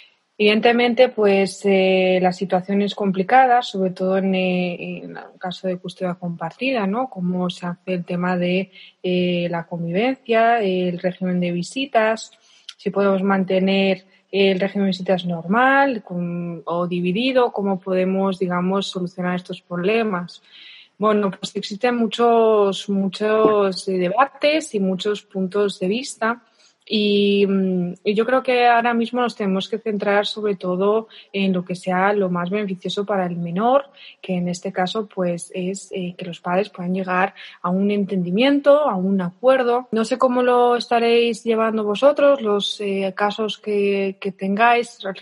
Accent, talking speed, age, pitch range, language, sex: Spanish, 145 wpm, 20-39, 185-225 Hz, Spanish, female